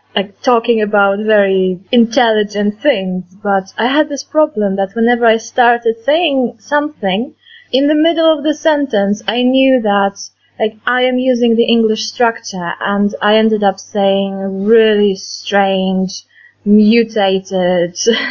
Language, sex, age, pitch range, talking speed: English, female, 20-39, 195-250 Hz, 135 wpm